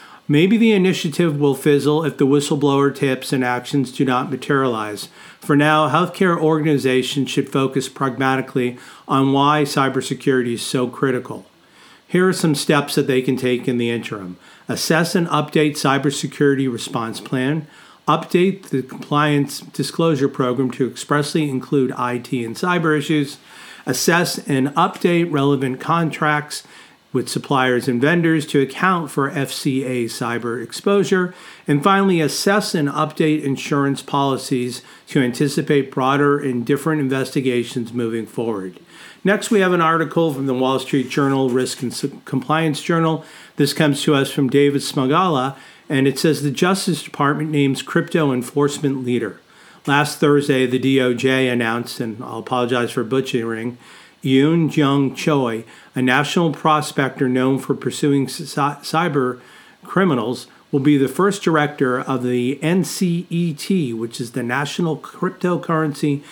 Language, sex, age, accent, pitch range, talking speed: English, male, 40-59, American, 130-155 Hz, 135 wpm